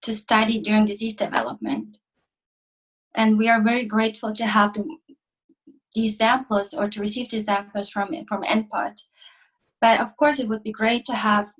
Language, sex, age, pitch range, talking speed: English, female, 20-39, 210-245 Hz, 165 wpm